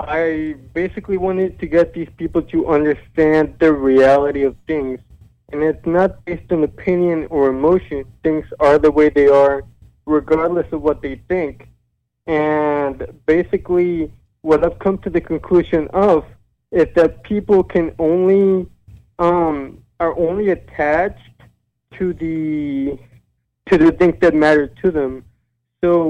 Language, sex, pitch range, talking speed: English, male, 140-170 Hz, 140 wpm